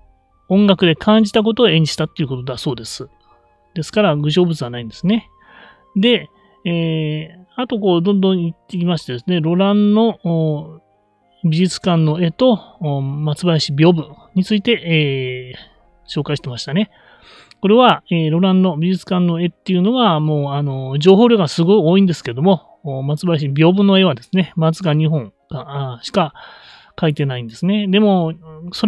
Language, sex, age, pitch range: Japanese, male, 30-49, 150-210 Hz